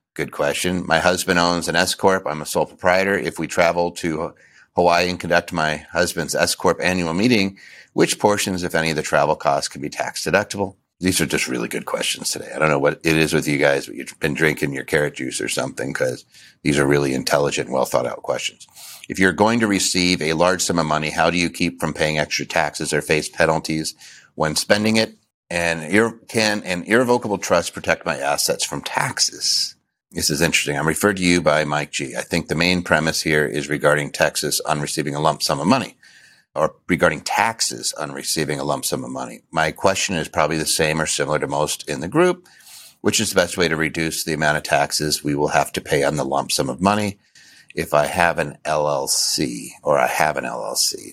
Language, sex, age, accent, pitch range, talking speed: English, male, 50-69, American, 75-95 Hz, 210 wpm